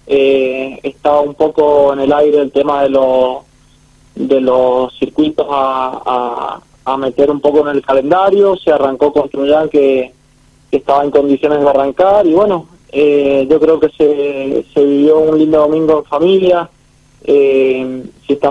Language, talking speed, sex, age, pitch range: Spanish, 160 wpm, male, 20-39, 135-150 Hz